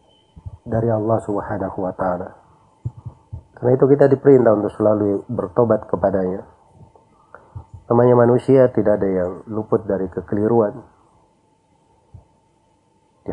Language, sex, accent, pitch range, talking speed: Indonesian, male, native, 105-115 Hz, 100 wpm